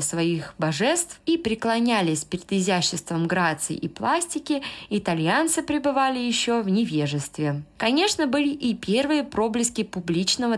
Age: 20-39